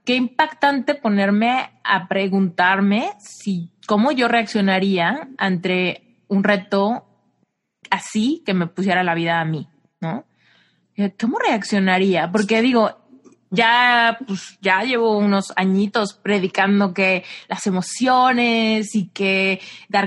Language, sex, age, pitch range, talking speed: Spanish, female, 20-39, 185-225 Hz, 115 wpm